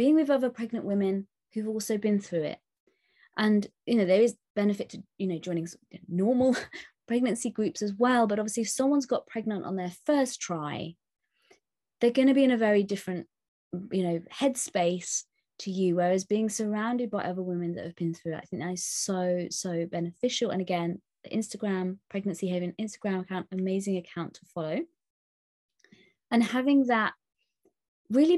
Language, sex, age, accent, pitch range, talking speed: English, female, 20-39, British, 185-240 Hz, 170 wpm